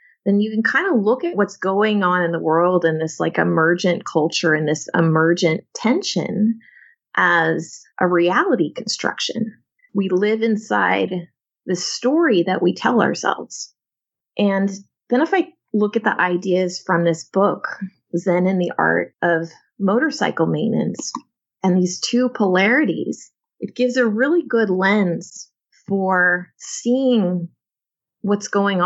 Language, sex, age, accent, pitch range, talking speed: English, female, 30-49, American, 170-220 Hz, 140 wpm